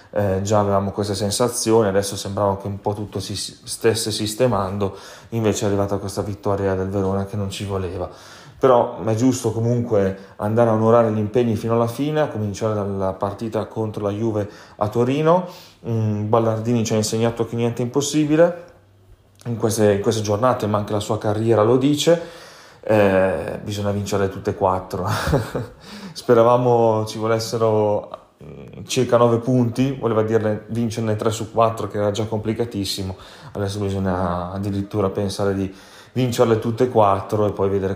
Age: 30-49